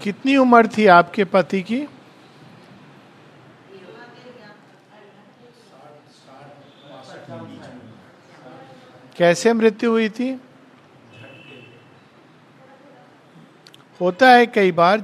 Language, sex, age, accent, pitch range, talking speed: Hindi, male, 50-69, native, 160-215 Hz, 55 wpm